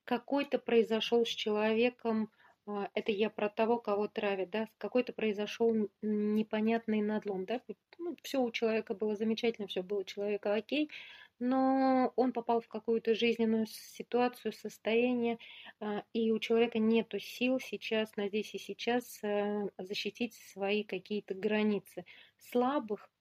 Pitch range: 210-235 Hz